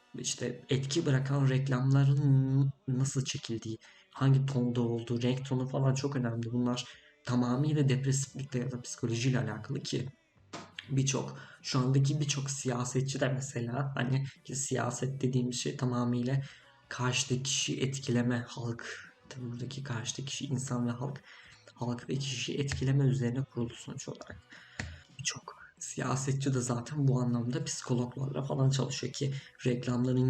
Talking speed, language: 125 wpm, Turkish